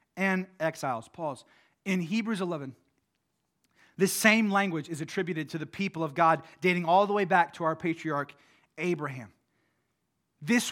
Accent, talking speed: American, 145 wpm